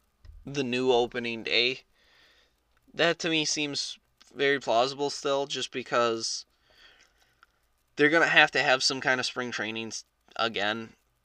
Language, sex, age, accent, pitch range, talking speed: English, male, 20-39, American, 105-130 Hz, 135 wpm